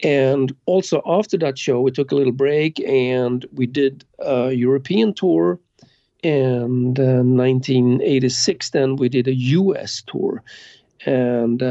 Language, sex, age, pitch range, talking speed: English, male, 40-59, 125-145 Hz, 135 wpm